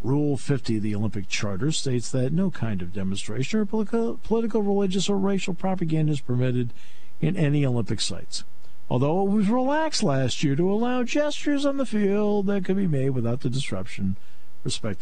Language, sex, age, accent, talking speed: English, male, 50-69, American, 175 wpm